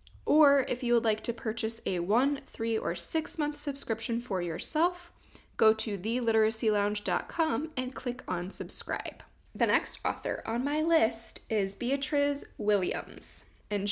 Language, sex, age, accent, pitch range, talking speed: English, female, 20-39, American, 205-260 Hz, 140 wpm